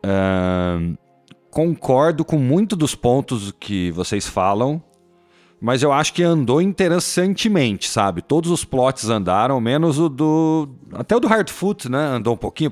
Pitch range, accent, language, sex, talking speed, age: 100-160 Hz, Brazilian, Portuguese, male, 140 wpm, 40-59